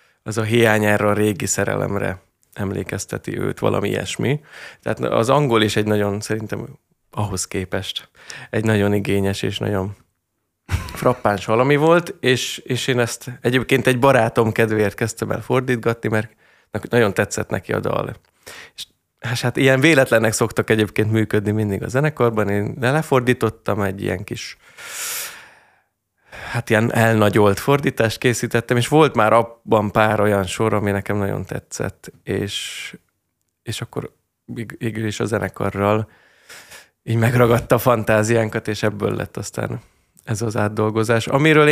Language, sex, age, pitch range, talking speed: Hungarian, male, 20-39, 105-125 Hz, 135 wpm